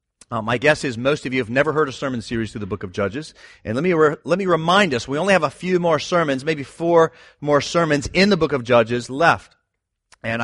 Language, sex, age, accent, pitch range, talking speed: English, male, 40-59, American, 120-175 Hz, 245 wpm